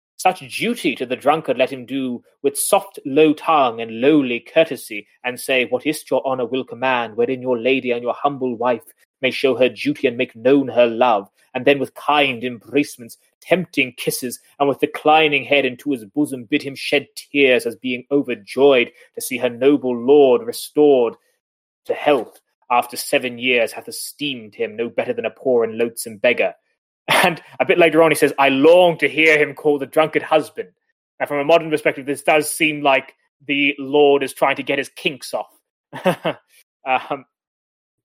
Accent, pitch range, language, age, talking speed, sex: British, 125-160 Hz, English, 20-39, 185 wpm, male